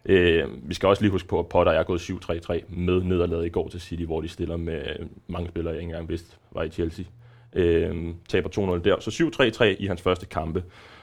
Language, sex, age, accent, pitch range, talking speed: Danish, male, 20-39, native, 85-105 Hz, 225 wpm